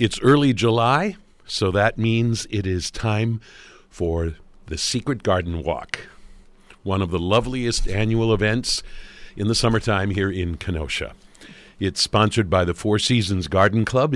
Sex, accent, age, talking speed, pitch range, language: male, American, 60-79, 145 wpm, 90-115 Hz, English